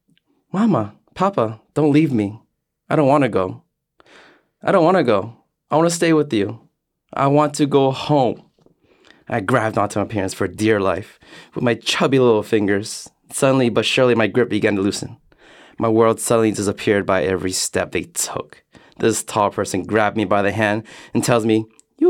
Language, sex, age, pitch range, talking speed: English, male, 20-39, 100-140 Hz, 185 wpm